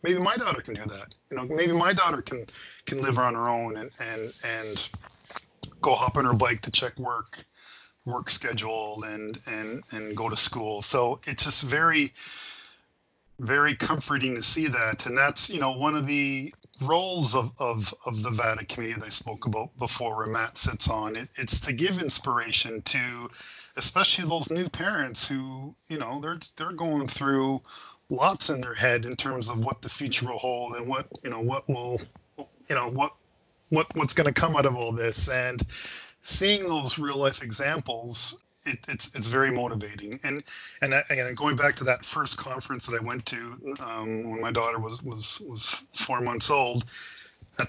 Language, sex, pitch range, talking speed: English, male, 115-145 Hz, 185 wpm